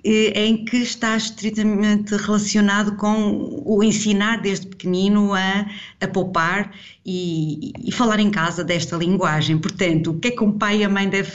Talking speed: 165 wpm